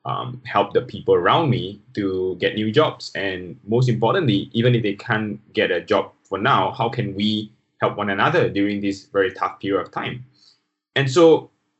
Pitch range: 95-120 Hz